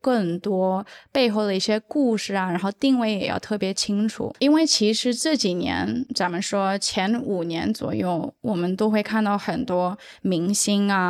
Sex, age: female, 20-39